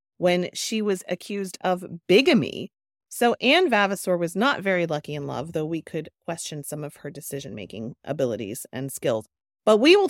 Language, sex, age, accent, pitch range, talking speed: English, female, 30-49, American, 145-215 Hz, 170 wpm